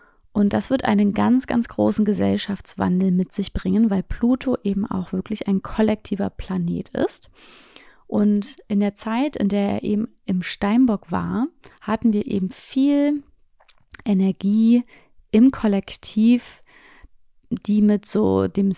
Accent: German